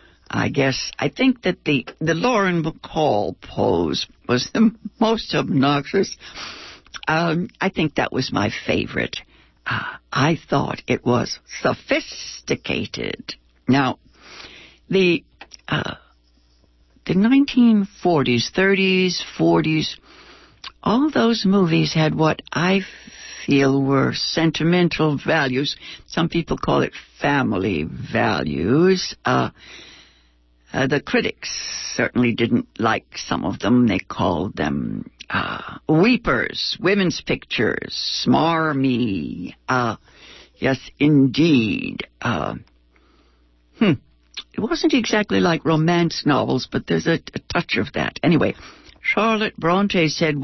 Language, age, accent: English, 60-79, American